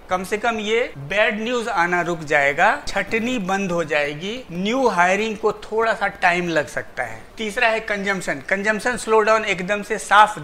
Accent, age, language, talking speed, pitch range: native, 50-69, Hindi, 180 wpm, 175-215 Hz